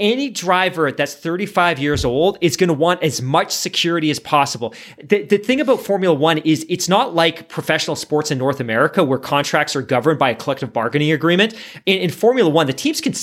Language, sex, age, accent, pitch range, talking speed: English, male, 30-49, American, 155-205 Hz, 205 wpm